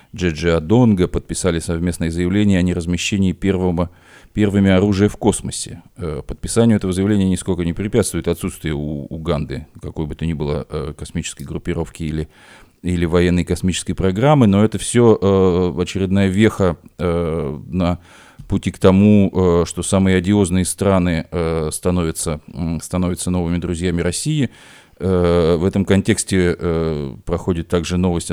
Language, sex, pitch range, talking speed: Russian, male, 80-95 Hz, 125 wpm